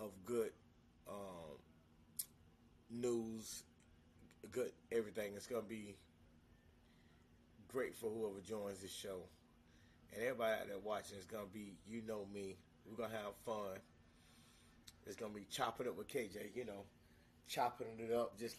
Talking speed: 155 wpm